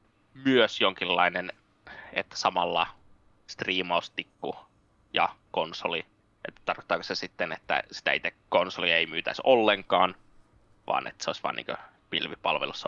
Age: 20-39